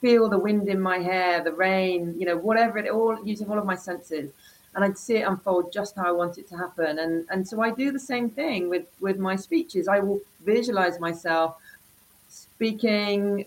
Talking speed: 210 wpm